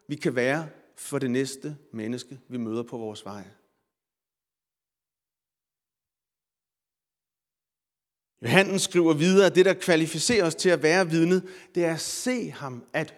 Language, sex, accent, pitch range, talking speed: Danish, male, native, 145-200 Hz, 135 wpm